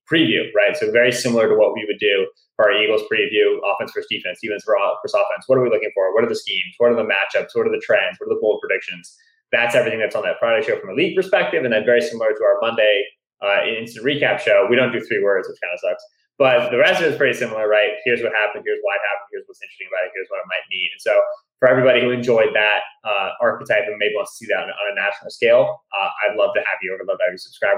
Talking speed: 275 wpm